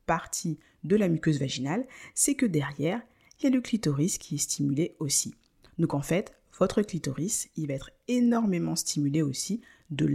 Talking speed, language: 170 wpm, French